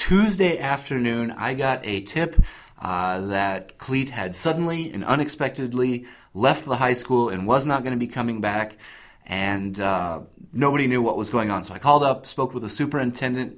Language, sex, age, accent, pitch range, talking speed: English, male, 30-49, American, 105-130 Hz, 180 wpm